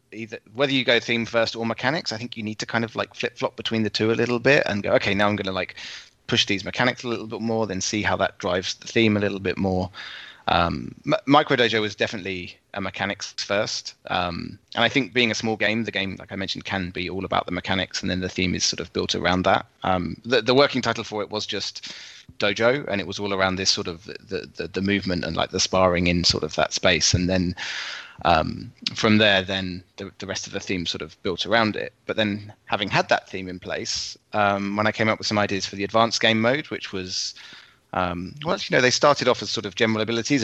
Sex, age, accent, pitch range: male, 20-39, British, 95-115 Hz